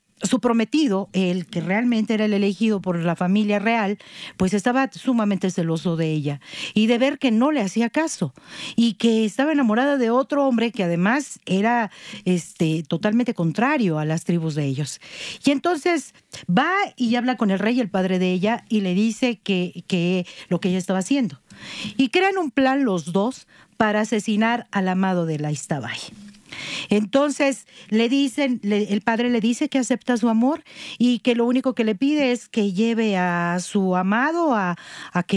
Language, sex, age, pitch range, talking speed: Spanish, female, 50-69, 180-245 Hz, 180 wpm